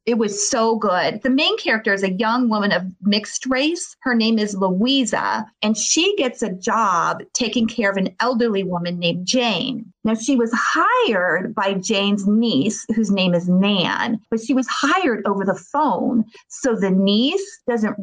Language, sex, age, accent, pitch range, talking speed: English, female, 30-49, American, 195-250 Hz, 175 wpm